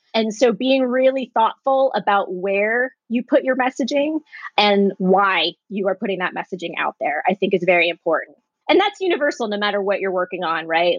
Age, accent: 20-39, American